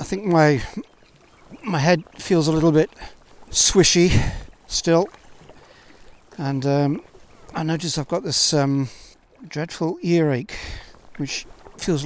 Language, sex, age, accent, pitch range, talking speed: English, male, 60-79, British, 130-155 Hz, 115 wpm